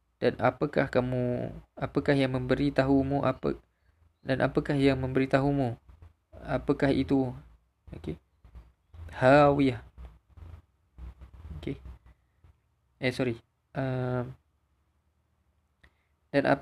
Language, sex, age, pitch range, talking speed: Malay, male, 20-39, 105-135 Hz, 70 wpm